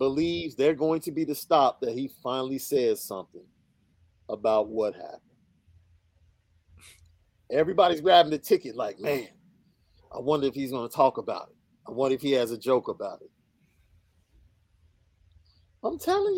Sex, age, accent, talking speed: male, 40-59, American, 150 wpm